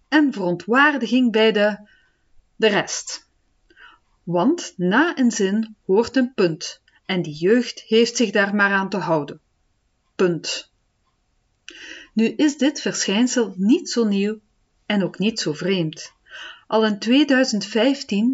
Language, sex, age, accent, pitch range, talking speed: Dutch, female, 40-59, Dutch, 180-250 Hz, 130 wpm